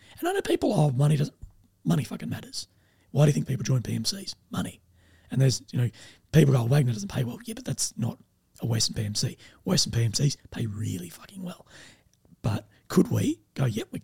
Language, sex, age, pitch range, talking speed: English, male, 30-49, 110-145 Hz, 195 wpm